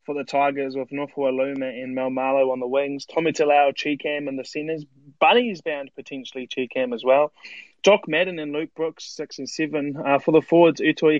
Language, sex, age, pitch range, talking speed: English, male, 20-39, 145-170 Hz, 200 wpm